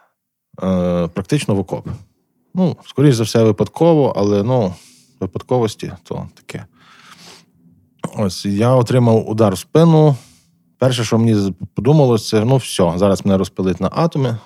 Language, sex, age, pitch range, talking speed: Ukrainian, male, 20-39, 95-125 Hz, 125 wpm